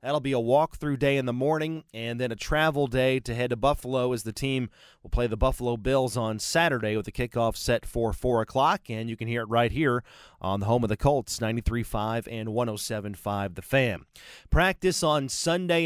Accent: American